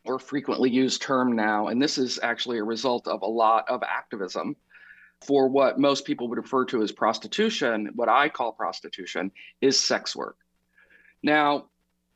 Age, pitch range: 40-59, 115-145 Hz